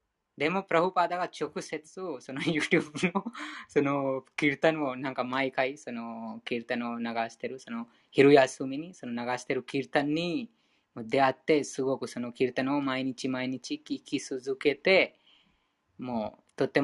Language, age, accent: Japanese, 20-39, Indian